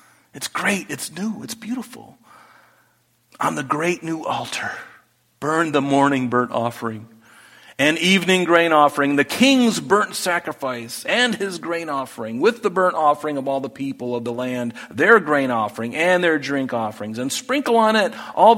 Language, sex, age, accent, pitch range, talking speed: English, male, 40-59, American, 115-155 Hz, 165 wpm